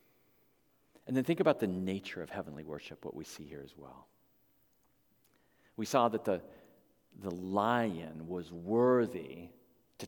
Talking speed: 145 wpm